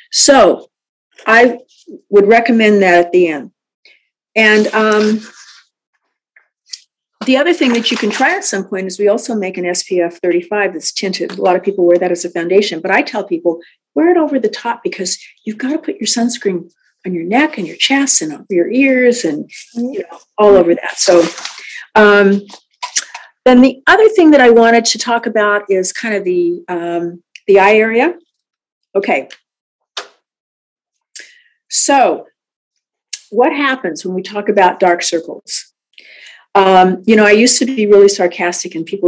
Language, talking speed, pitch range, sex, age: English, 170 wpm, 180-240 Hz, female, 50-69